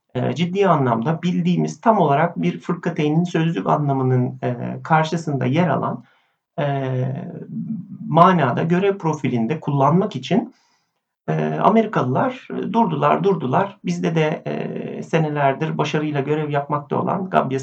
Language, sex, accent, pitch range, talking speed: Turkish, male, native, 140-190 Hz, 95 wpm